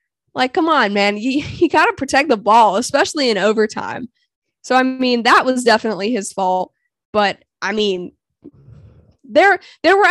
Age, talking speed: 10-29, 160 wpm